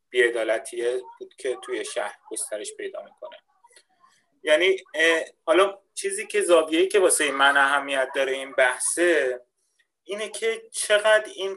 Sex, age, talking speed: male, 30-49, 125 wpm